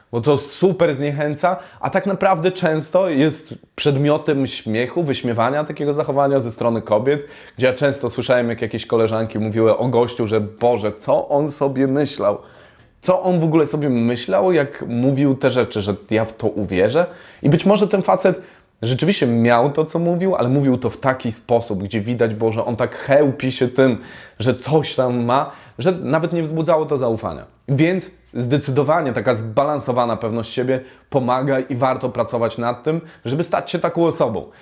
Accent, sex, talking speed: native, male, 170 wpm